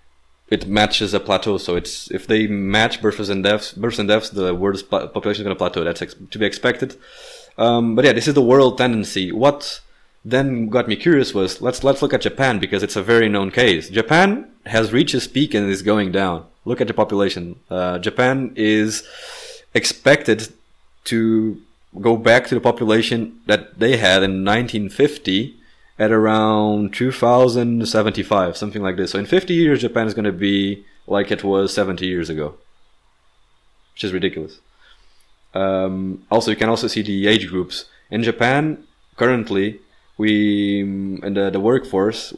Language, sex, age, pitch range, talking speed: English, male, 20-39, 95-115 Hz, 170 wpm